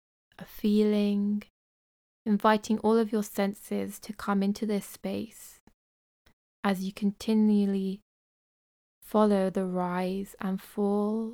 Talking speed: 100 wpm